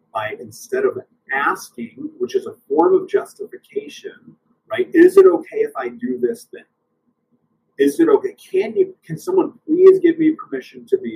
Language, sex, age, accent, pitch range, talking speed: English, male, 40-59, American, 325-400 Hz, 170 wpm